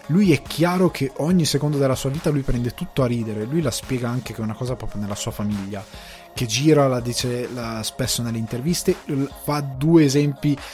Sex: male